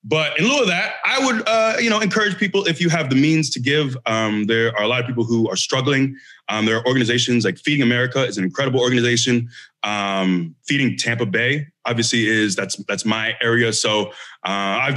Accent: American